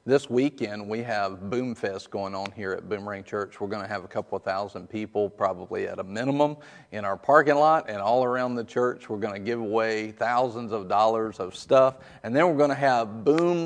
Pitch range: 105-125 Hz